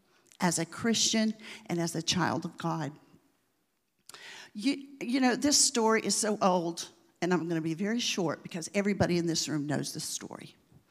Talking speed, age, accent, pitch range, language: 175 wpm, 50-69, American, 170-225 Hz, English